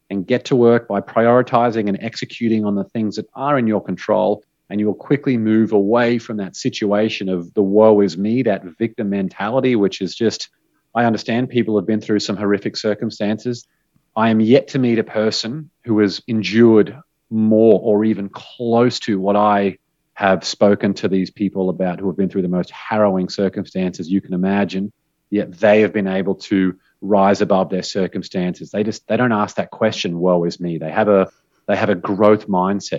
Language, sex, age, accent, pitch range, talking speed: English, male, 30-49, Australian, 100-115 Hz, 195 wpm